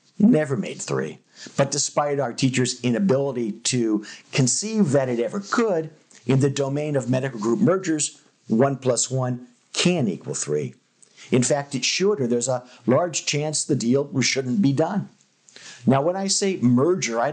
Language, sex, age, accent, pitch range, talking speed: English, male, 50-69, American, 125-155 Hz, 170 wpm